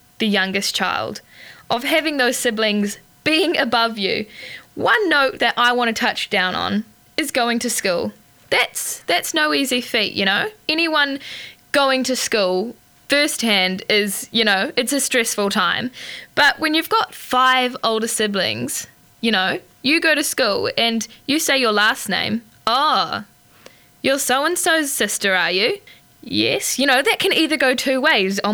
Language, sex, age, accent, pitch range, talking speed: English, female, 10-29, Australian, 205-265 Hz, 160 wpm